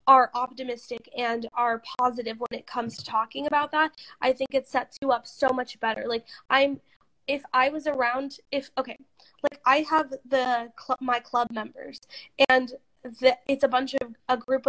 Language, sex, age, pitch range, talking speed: English, female, 20-39, 240-280 Hz, 185 wpm